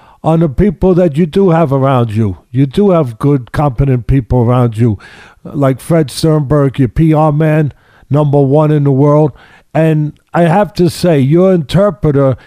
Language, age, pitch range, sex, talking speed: English, 50-69, 140-190 Hz, male, 170 wpm